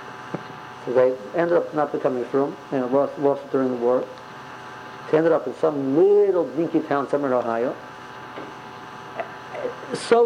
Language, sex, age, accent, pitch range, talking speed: English, male, 50-69, American, 140-185 Hz, 145 wpm